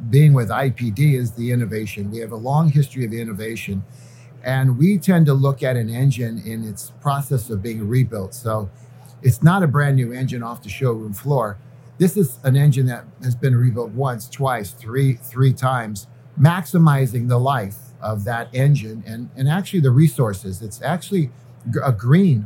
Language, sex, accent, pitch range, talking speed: English, male, American, 120-140 Hz, 175 wpm